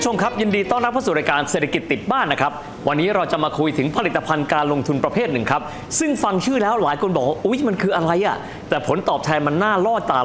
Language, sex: Thai, male